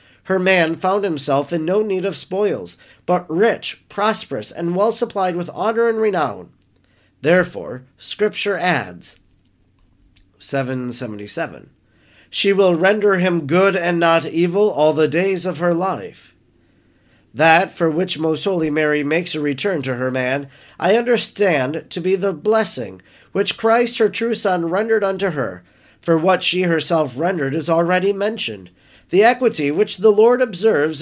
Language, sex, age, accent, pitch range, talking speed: English, male, 40-59, American, 145-205 Hz, 145 wpm